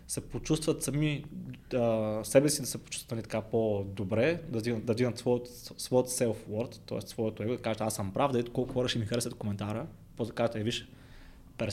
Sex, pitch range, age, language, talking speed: male, 115-135 Hz, 20-39, Bulgarian, 185 wpm